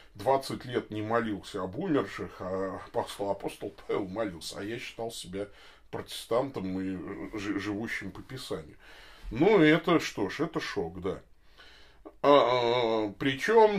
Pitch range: 95-125 Hz